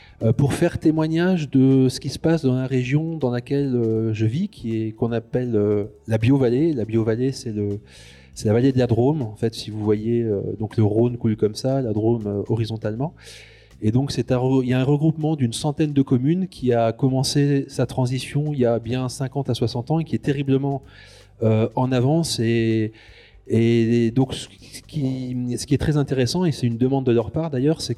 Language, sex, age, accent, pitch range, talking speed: French, male, 30-49, French, 115-140 Hz, 205 wpm